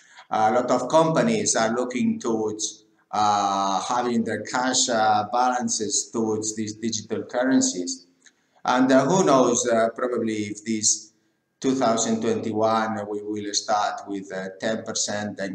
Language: English